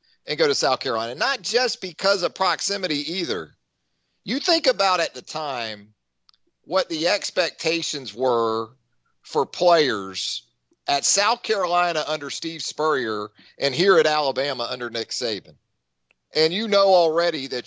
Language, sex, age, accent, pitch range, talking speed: English, male, 40-59, American, 140-210 Hz, 145 wpm